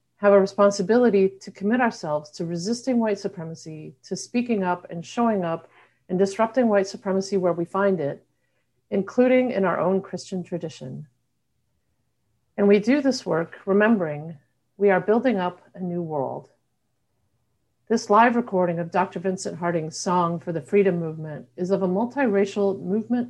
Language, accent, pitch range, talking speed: English, American, 160-205 Hz, 155 wpm